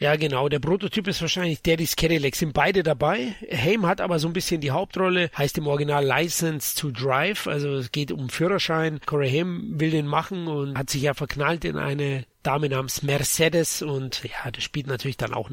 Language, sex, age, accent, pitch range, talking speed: German, male, 30-49, German, 140-170 Hz, 200 wpm